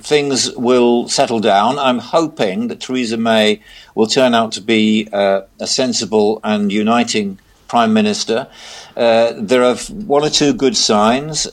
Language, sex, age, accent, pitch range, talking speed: English, male, 50-69, British, 105-130 Hz, 150 wpm